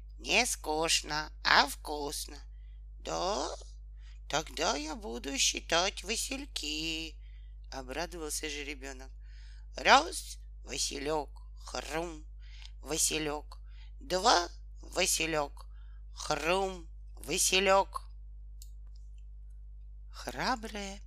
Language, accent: Russian, native